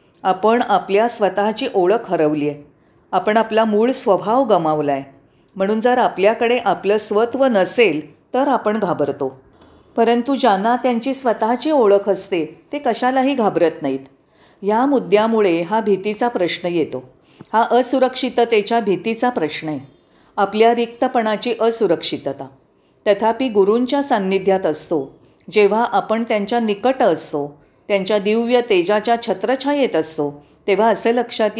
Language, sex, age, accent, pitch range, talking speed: Marathi, female, 40-59, native, 180-240 Hz, 120 wpm